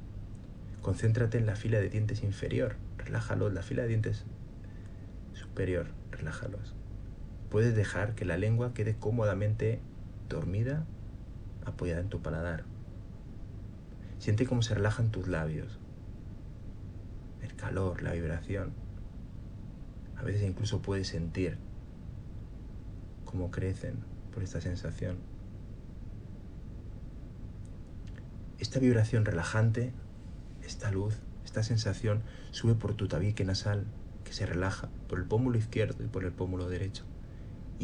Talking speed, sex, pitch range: 115 wpm, male, 95-110 Hz